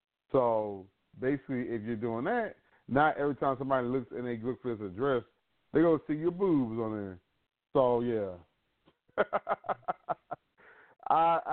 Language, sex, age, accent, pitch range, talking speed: English, male, 30-49, American, 105-160 Hz, 145 wpm